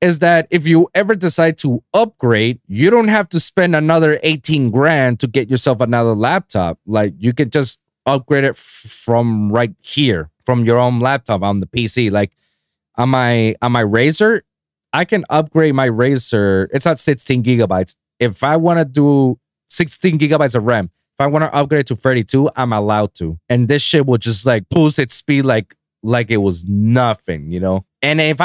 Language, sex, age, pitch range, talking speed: English, male, 20-39, 110-155 Hz, 190 wpm